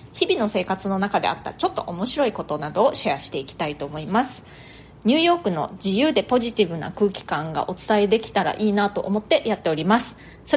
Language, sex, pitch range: Japanese, female, 180-275 Hz